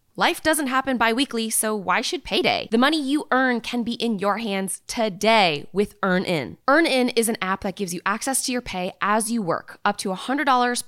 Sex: female